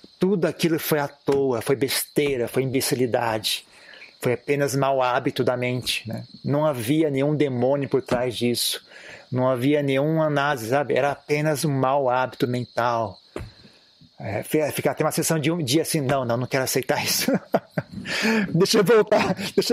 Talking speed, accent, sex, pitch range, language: 150 wpm, Brazilian, male, 140-175 Hz, Portuguese